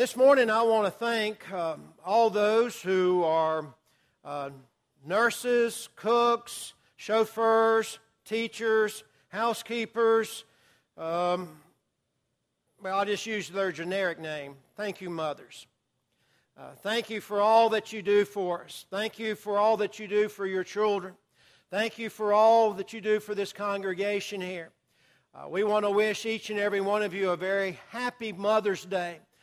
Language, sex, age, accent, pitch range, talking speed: English, male, 60-79, American, 190-215 Hz, 155 wpm